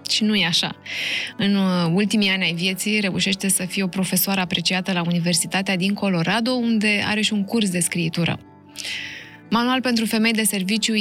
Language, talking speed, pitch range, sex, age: Romanian, 170 wpm, 180-215 Hz, female, 20-39